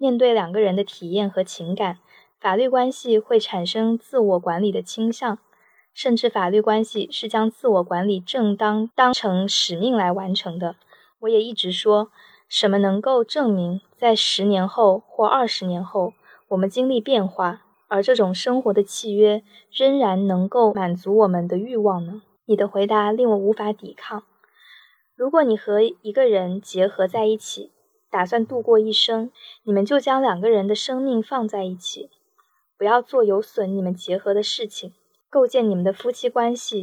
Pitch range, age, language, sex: 190-230 Hz, 20-39, Chinese, female